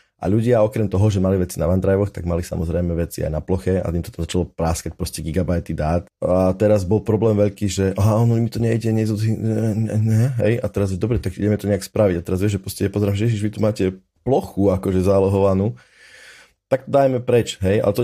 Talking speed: 225 wpm